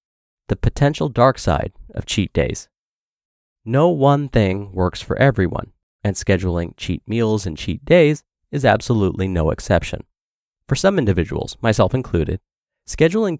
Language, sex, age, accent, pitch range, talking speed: English, male, 30-49, American, 100-150 Hz, 135 wpm